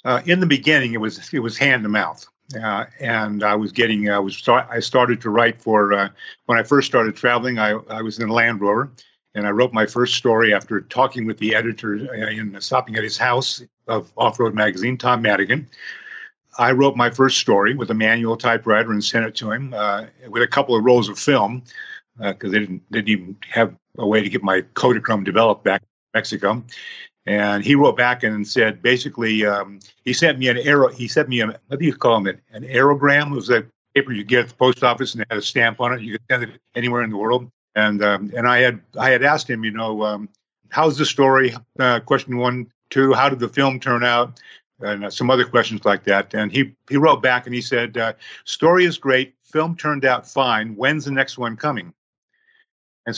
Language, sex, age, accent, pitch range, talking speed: English, male, 50-69, American, 110-130 Hz, 225 wpm